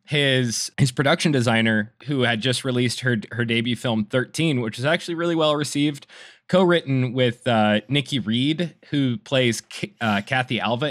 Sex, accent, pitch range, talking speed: male, American, 115-155 Hz, 165 wpm